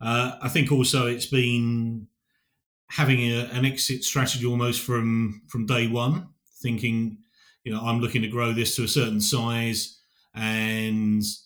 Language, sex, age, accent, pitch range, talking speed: English, male, 30-49, British, 115-130 Hz, 150 wpm